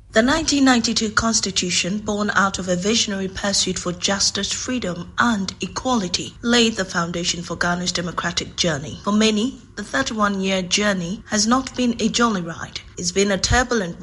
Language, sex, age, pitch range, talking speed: English, female, 30-49, 180-230 Hz, 155 wpm